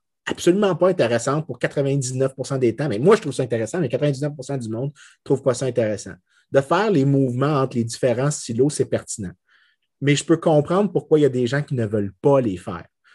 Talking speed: 215 wpm